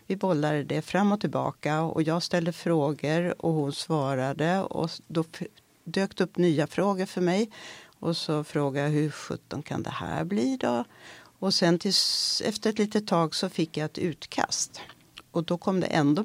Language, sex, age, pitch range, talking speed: Swedish, female, 60-79, 150-190 Hz, 180 wpm